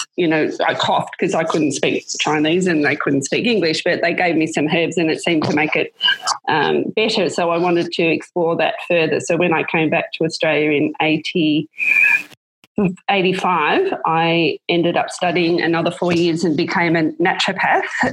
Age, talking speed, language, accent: 20-39, 185 wpm, English, Australian